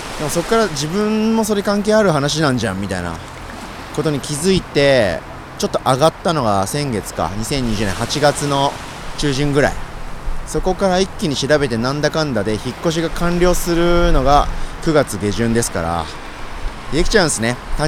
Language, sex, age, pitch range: Japanese, male, 30-49, 95-150 Hz